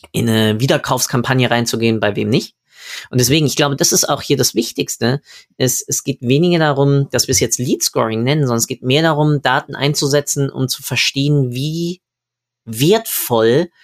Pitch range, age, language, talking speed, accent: 115-135 Hz, 20-39, German, 180 wpm, German